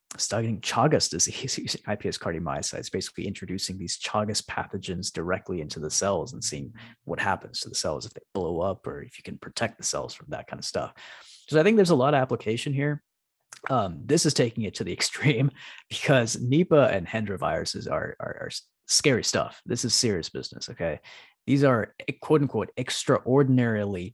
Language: English